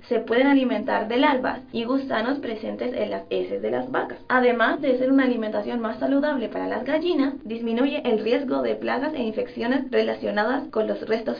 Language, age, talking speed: Spanish, 20-39, 185 wpm